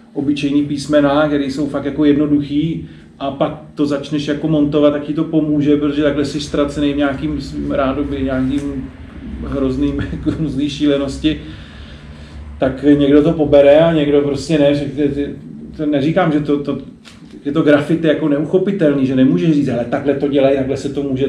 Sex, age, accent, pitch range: male, 40-59, native, 130-145 Hz